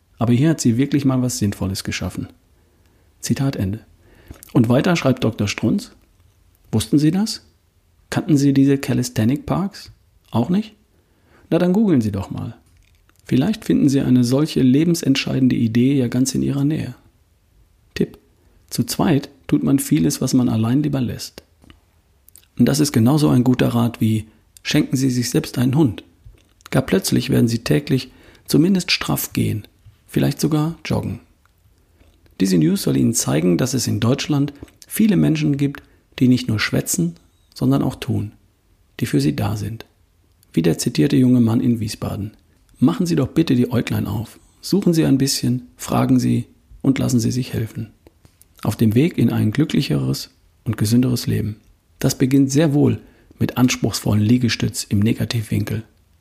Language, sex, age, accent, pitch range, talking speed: German, male, 40-59, German, 90-130 Hz, 155 wpm